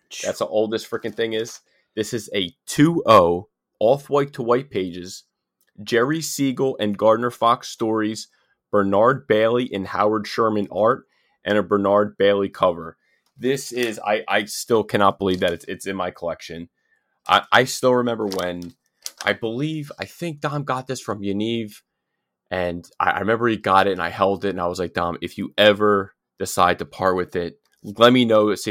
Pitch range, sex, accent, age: 95-115 Hz, male, American, 20-39